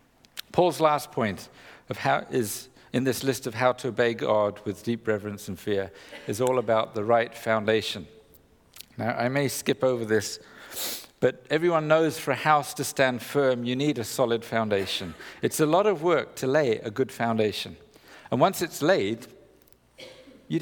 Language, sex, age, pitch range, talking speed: English, male, 50-69, 105-140 Hz, 175 wpm